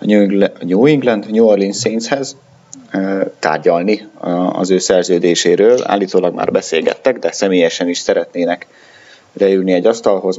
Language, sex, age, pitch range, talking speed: Hungarian, male, 30-49, 90-125 Hz, 115 wpm